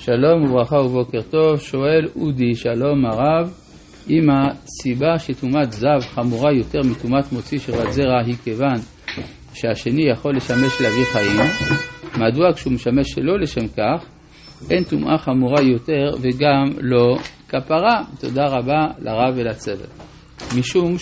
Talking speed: 125 wpm